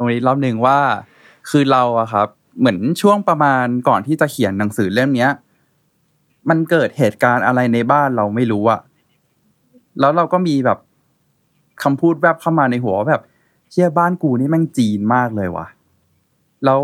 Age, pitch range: 20-39, 110-140 Hz